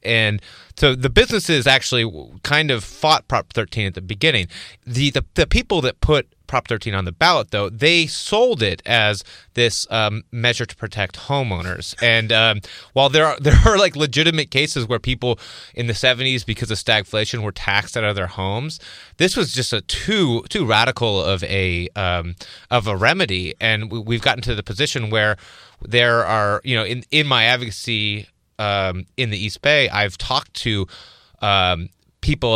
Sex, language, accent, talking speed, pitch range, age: male, English, American, 180 wpm, 100-130 Hz, 30-49